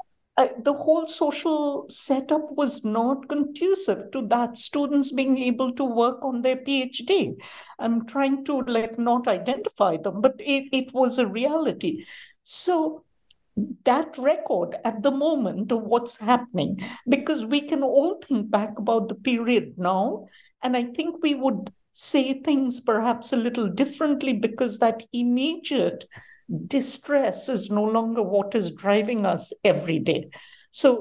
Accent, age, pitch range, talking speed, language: Indian, 60-79, 225-285 Hz, 145 wpm, English